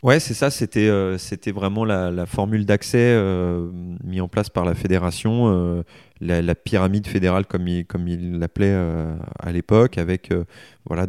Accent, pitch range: French, 85-105 Hz